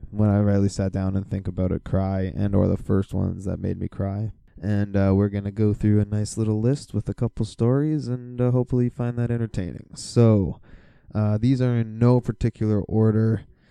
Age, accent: 20-39, American